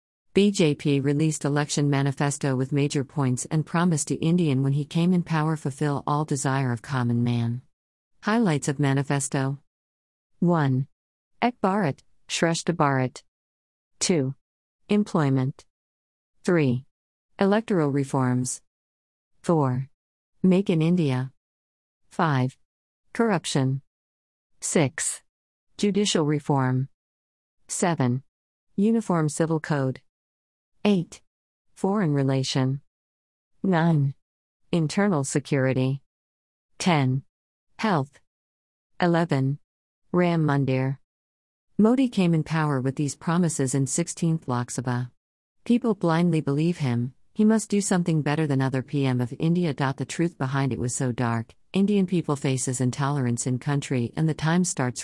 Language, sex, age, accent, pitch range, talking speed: Hindi, female, 50-69, American, 120-160 Hz, 110 wpm